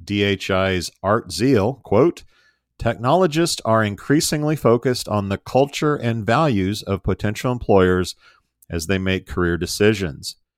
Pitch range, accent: 95-125 Hz, American